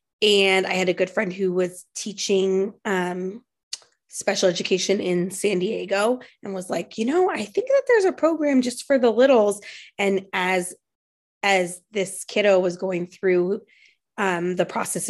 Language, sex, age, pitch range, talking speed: English, female, 20-39, 185-215 Hz, 165 wpm